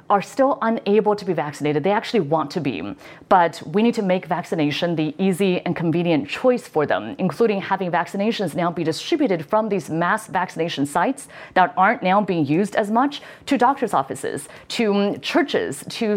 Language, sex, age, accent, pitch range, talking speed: English, female, 30-49, American, 175-230 Hz, 180 wpm